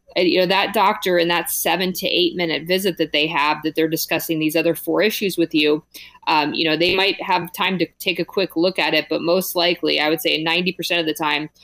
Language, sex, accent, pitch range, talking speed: English, female, American, 155-175 Hz, 240 wpm